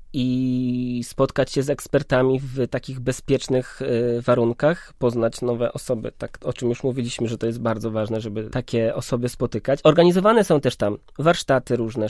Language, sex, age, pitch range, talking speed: Polish, male, 20-39, 120-145 Hz, 155 wpm